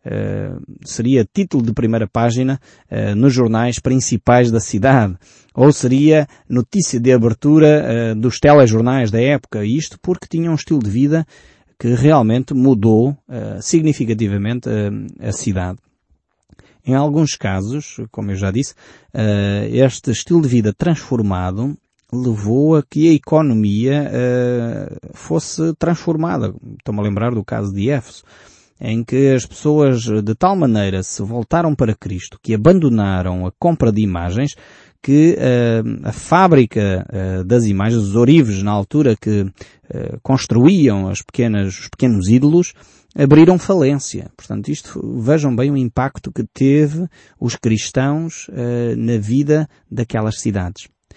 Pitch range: 110-145 Hz